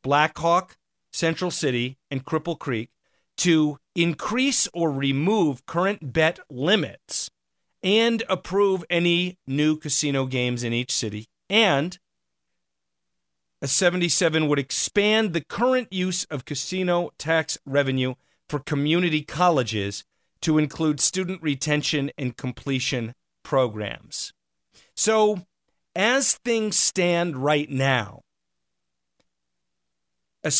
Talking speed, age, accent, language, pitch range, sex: 100 wpm, 40-59, American, English, 120-170 Hz, male